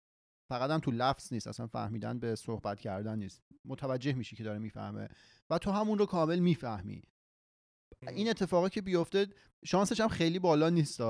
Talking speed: 160 wpm